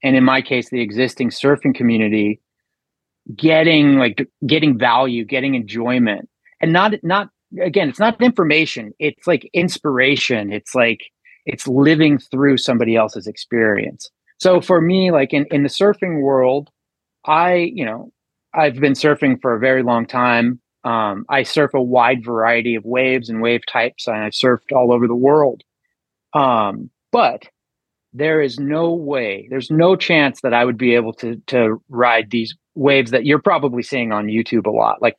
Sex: male